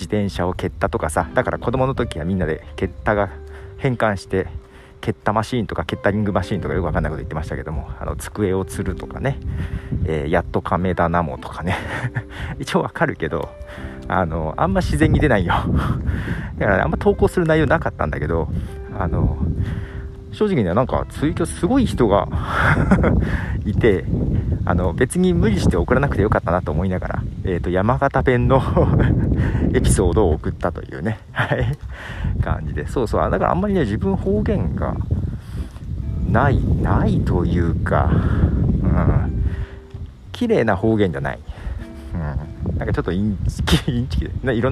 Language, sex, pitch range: Japanese, male, 80-115 Hz